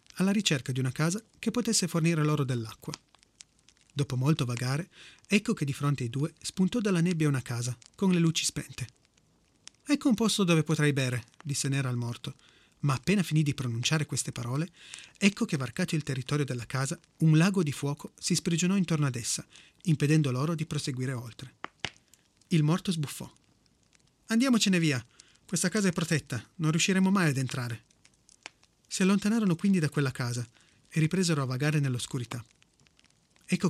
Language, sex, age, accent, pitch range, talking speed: Italian, male, 30-49, native, 130-180 Hz, 165 wpm